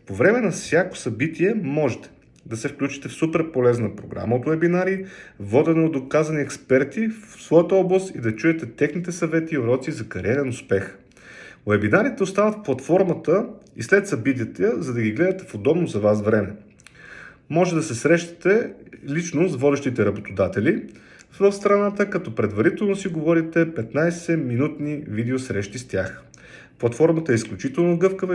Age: 40-59